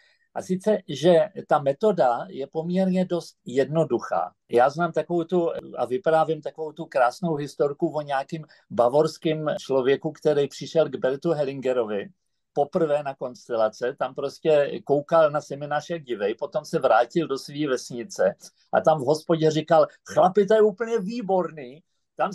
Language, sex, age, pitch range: Czech, male, 50-69, 145-185 Hz